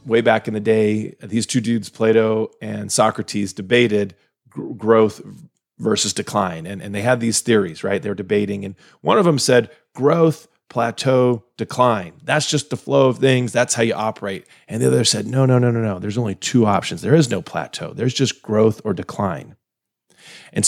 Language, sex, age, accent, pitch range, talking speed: English, male, 40-59, American, 110-130 Hz, 190 wpm